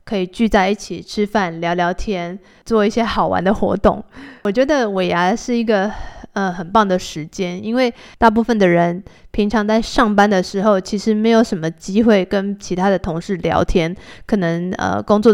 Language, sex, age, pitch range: Chinese, female, 20-39, 185-225 Hz